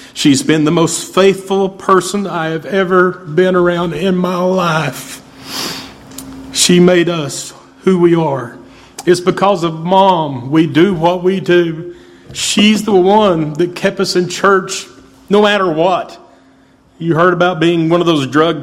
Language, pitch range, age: English, 130-170 Hz, 40-59